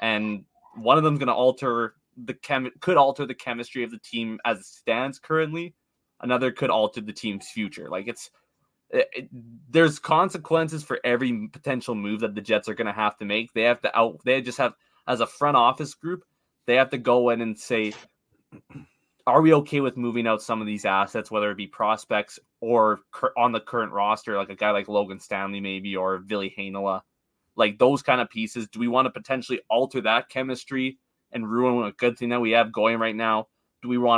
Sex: male